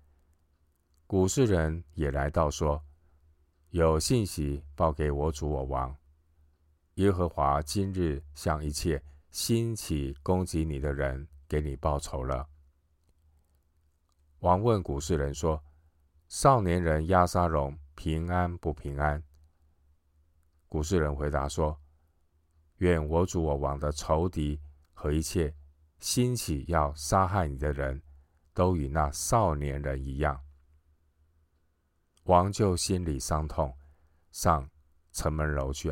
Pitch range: 75-80 Hz